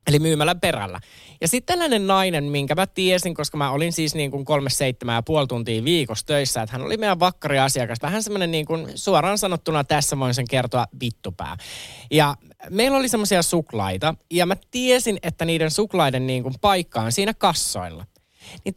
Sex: male